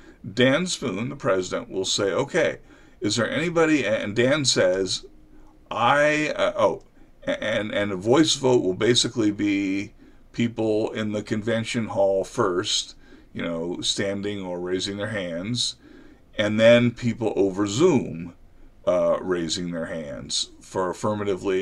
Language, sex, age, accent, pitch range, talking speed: English, male, 50-69, American, 100-130 Hz, 135 wpm